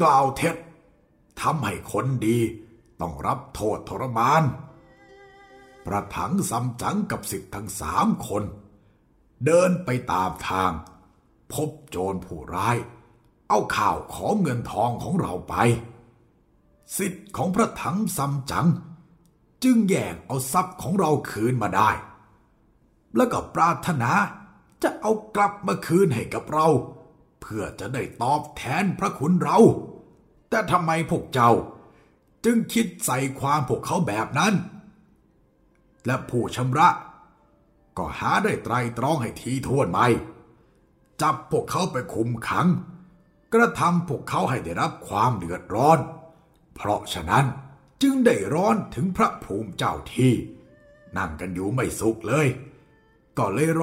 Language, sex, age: Thai, male, 60-79